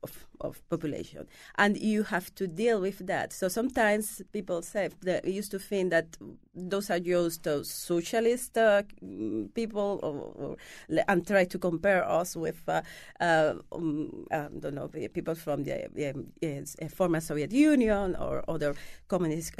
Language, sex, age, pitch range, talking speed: English, female, 40-59, 160-210 Hz, 155 wpm